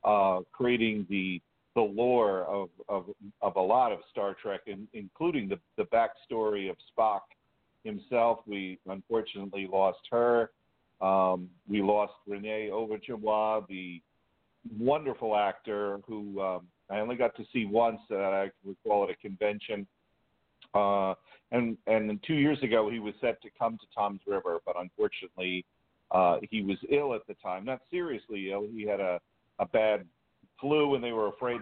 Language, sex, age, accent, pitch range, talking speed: English, male, 50-69, American, 95-115 Hz, 160 wpm